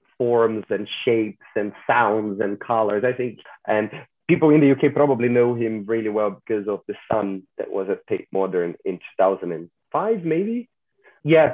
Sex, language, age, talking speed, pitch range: male, English, 30-49, 165 wpm, 95-120 Hz